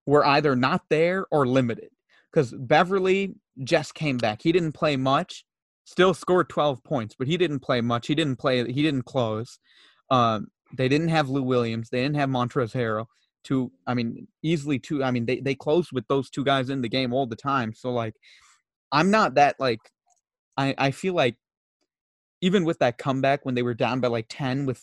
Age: 30-49